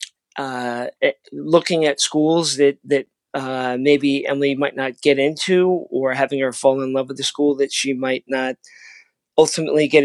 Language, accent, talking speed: English, American, 165 wpm